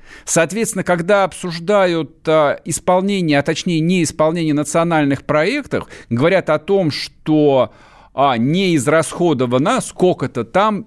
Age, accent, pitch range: 50-69, native, 140-185 Hz